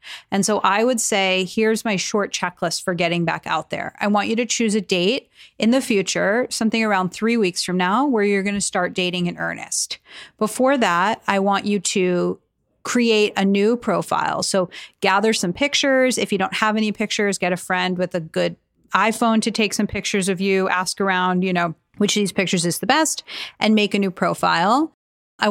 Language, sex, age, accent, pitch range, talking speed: English, female, 30-49, American, 185-220 Hz, 205 wpm